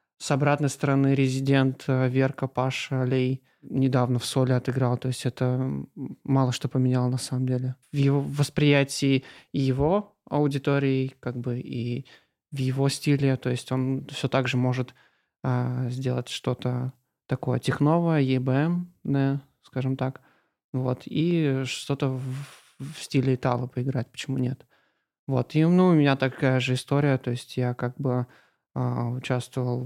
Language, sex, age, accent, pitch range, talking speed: Russian, male, 20-39, native, 125-135 Hz, 145 wpm